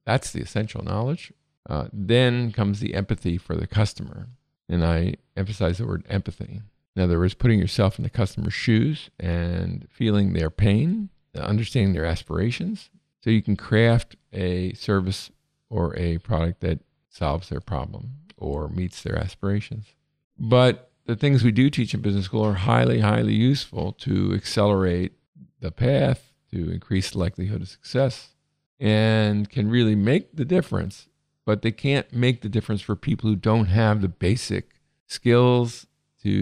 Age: 50-69